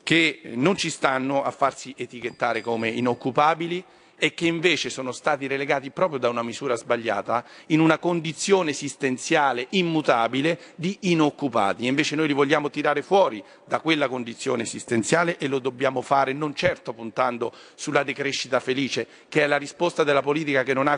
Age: 40-59